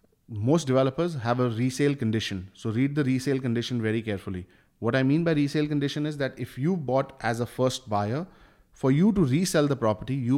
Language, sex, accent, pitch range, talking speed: English, male, Indian, 110-140 Hz, 200 wpm